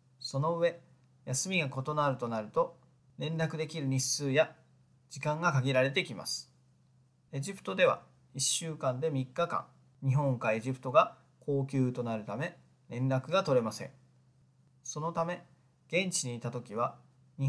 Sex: male